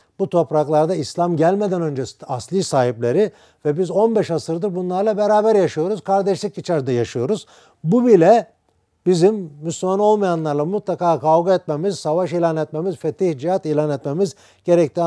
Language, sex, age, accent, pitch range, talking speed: Turkish, male, 50-69, native, 135-180 Hz, 130 wpm